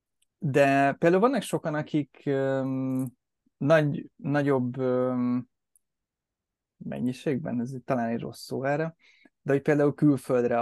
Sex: male